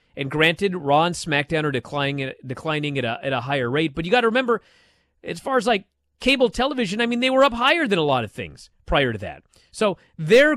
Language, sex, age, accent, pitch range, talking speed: English, male, 30-49, American, 110-165 Hz, 225 wpm